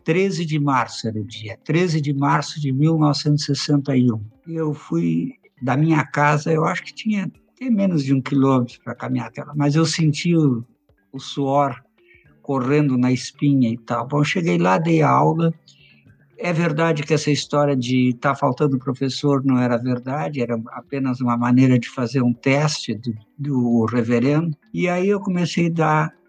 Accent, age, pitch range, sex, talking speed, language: Brazilian, 60-79, 130-155 Hz, male, 175 wpm, Portuguese